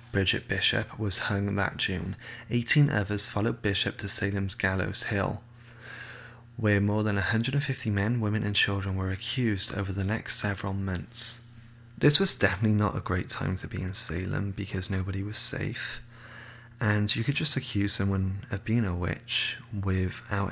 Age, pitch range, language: 20-39, 100-120 Hz, English